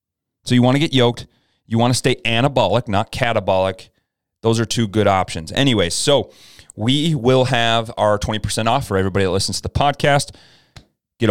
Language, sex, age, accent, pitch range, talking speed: English, male, 30-49, American, 95-120 Hz, 180 wpm